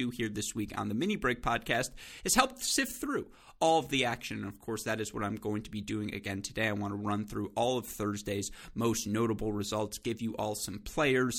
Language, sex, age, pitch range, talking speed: English, male, 30-49, 105-125 Hz, 235 wpm